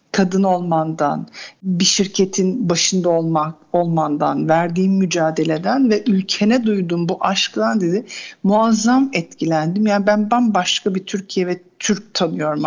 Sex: female